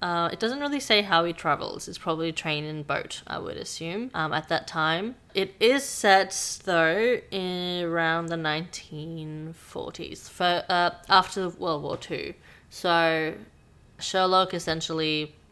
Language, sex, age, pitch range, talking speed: English, female, 20-39, 160-180 Hz, 145 wpm